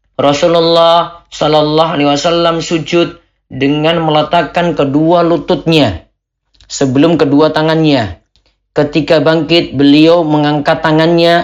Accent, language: native, Indonesian